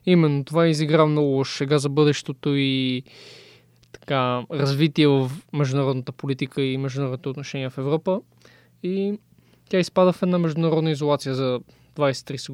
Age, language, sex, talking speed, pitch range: 20-39, Bulgarian, male, 130 wpm, 135-170 Hz